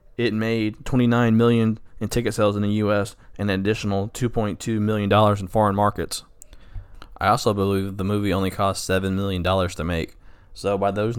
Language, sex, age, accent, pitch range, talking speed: English, male, 20-39, American, 95-110 Hz, 165 wpm